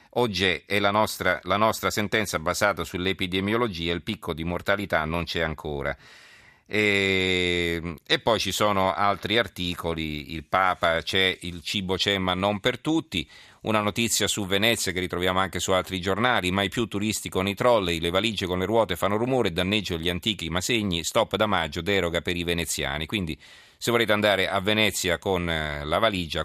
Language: Italian